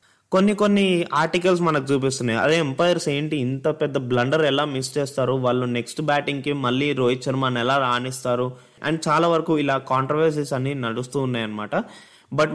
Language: Telugu